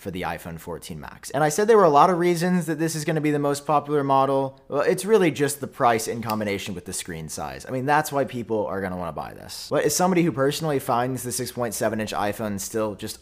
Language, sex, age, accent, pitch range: Chinese, male, 30-49, American, 100-145 Hz